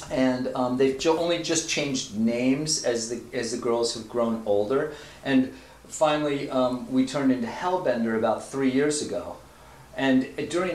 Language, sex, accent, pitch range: English, male, American, 120-150 Hz